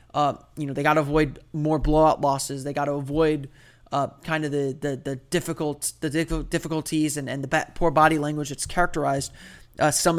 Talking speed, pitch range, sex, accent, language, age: 200 wpm, 140-160 Hz, male, American, English, 20-39